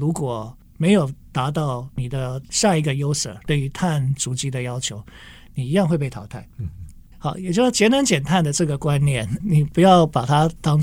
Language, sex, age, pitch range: Chinese, male, 50-69, 125-170 Hz